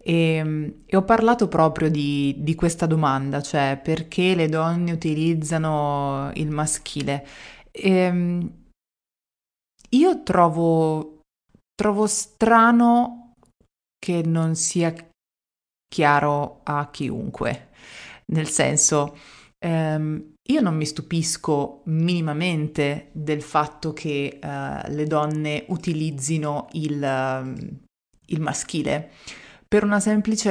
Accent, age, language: native, 30-49, Italian